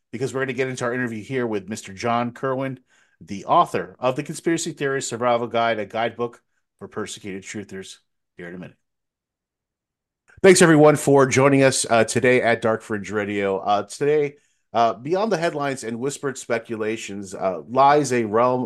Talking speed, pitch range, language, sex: 175 wpm, 110-140 Hz, English, male